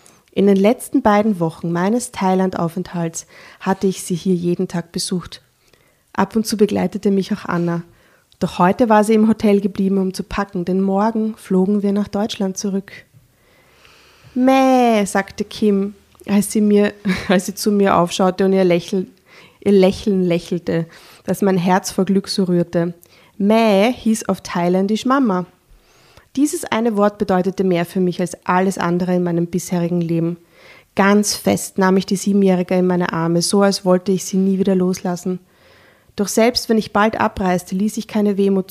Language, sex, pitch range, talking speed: German, female, 180-205 Hz, 165 wpm